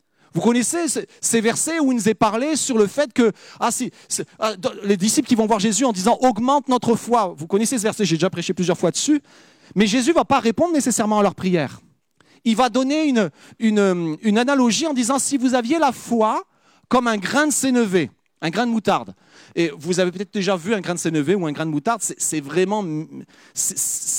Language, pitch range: French, 210-275 Hz